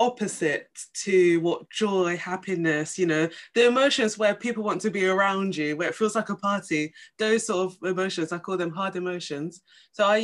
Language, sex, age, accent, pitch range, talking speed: English, female, 20-39, British, 175-225 Hz, 195 wpm